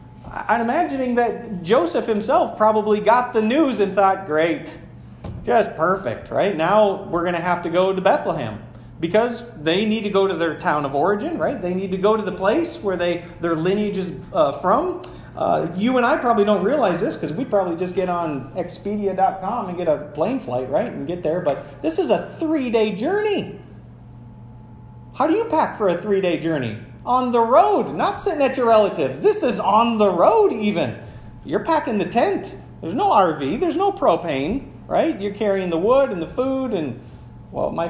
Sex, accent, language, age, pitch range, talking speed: male, American, English, 40-59, 175-245 Hz, 195 wpm